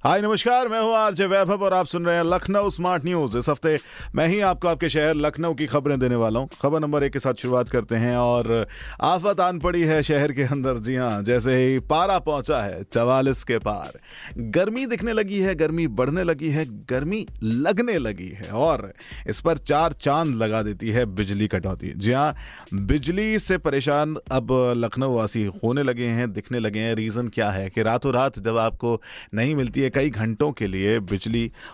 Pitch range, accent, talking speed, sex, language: 105-145 Hz, native, 195 wpm, male, Hindi